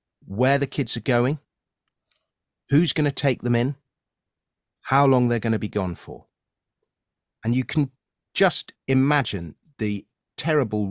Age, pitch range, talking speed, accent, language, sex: 40-59, 95-130 Hz, 145 wpm, British, English, male